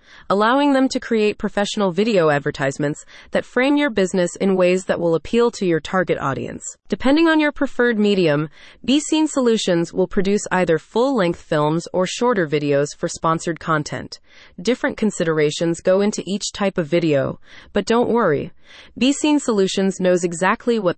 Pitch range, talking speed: 170-235 Hz, 155 wpm